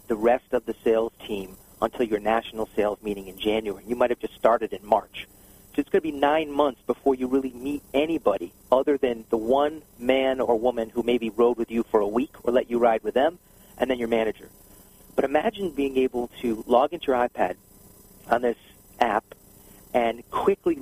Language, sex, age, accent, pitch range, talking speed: English, male, 40-59, American, 100-140 Hz, 205 wpm